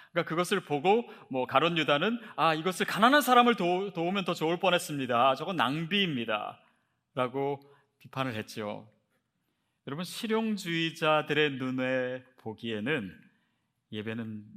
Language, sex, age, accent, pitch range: Korean, male, 30-49, native, 130-205 Hz